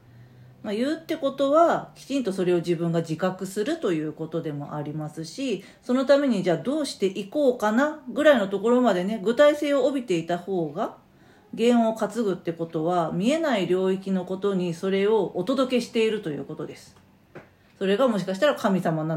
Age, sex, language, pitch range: 40-59, female, Japanese, 165-275 Hz